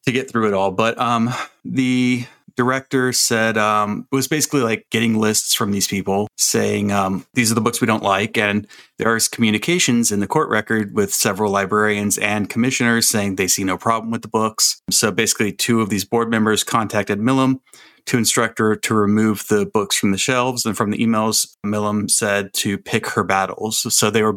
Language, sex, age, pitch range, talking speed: English, male, 30-49, 105-125 Hz, 200 wpm